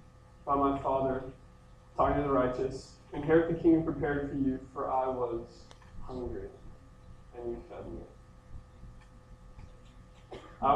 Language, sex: English, male